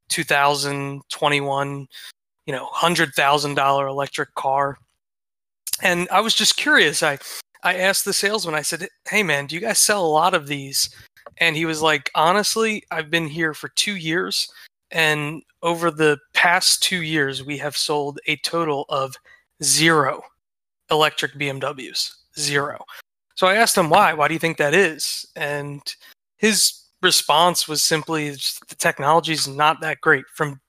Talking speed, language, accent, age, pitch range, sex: 155 wpm, English, American, 20-39, 145-175 Hz, male